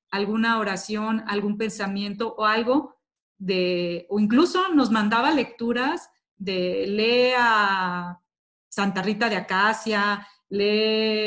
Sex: female